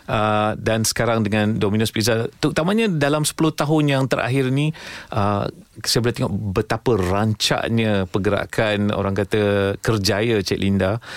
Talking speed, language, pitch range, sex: 135 wpm, Malay, 110-140 Hz, male